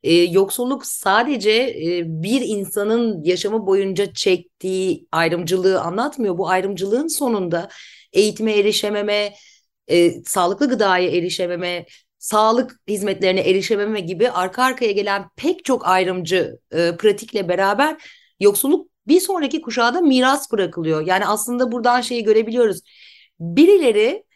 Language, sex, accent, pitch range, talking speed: Turkish, female, native, 185-255 Hz, 100 wpm